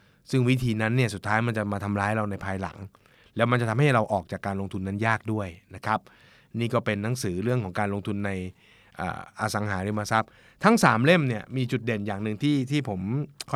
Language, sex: Thai, male